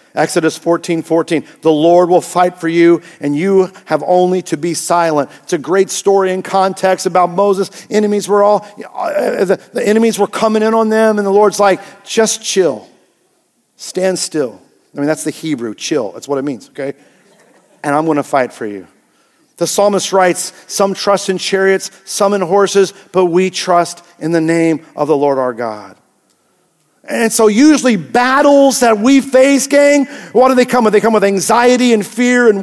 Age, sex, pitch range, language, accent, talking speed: 50-69, male, 175-240 Hz, English, American, 185 wpm